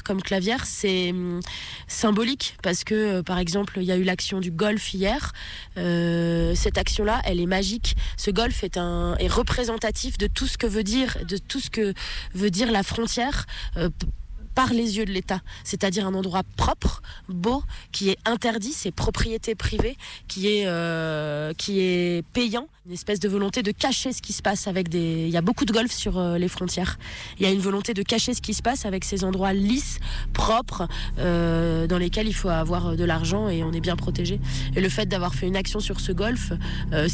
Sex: female